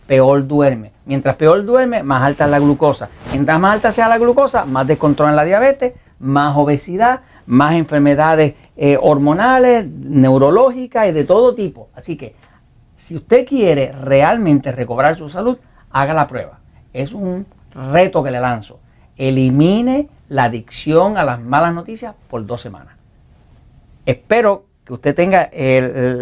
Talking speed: 145 wpm